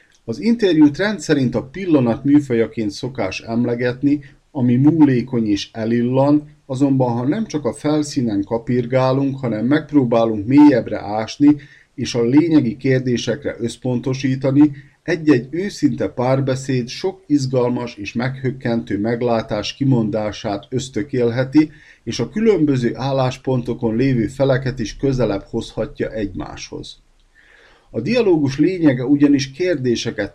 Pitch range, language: 115-145 Hz, Hungarian